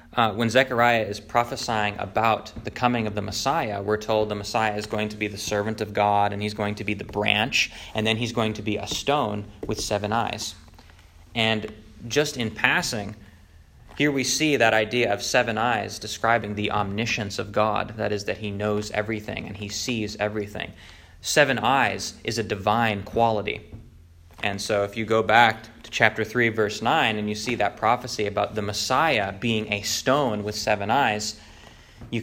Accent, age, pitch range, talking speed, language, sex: American, 20-39, 100-115 Hz, 185 wpm, English, male